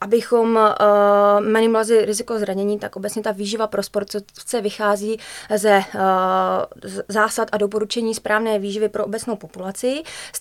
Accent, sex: native, female